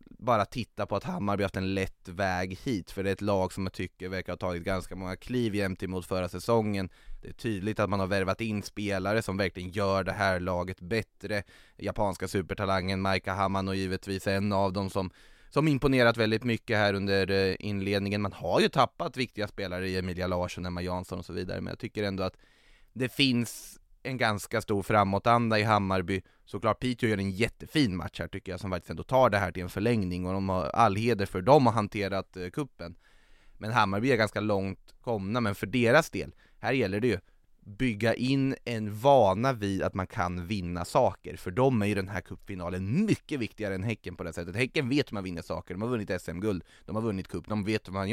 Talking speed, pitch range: 215 wpm, 95-110 Hz